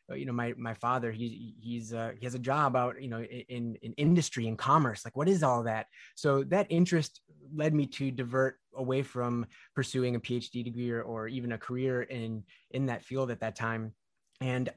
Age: 20-39